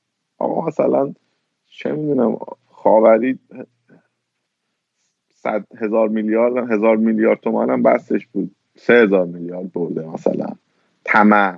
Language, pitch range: Persian, 105-125 Hz